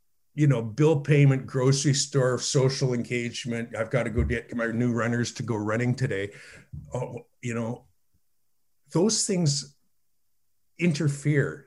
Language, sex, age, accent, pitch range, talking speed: English, male, 50-69, American, 120-145 Hz, 135 wpm